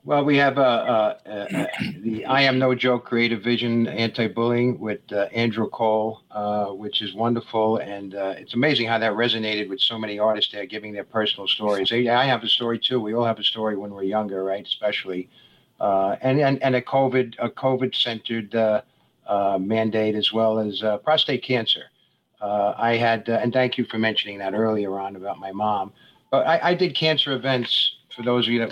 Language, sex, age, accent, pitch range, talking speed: English, male, 50-69, American, 105-125 Hz, 205 wpm